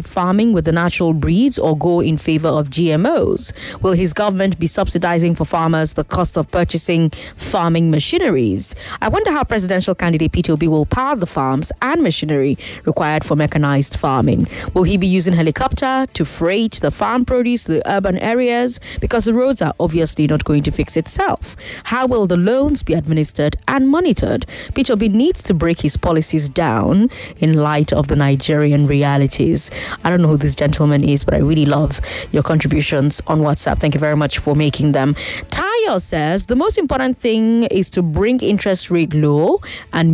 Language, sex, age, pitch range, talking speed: English, female, 20-39, 155-220 Hz, 180 wpm